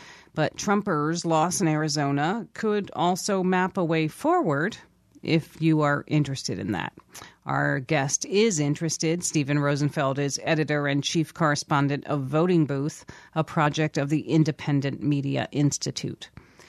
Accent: American